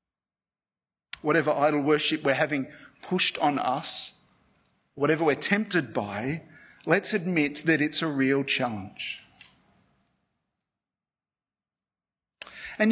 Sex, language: male, English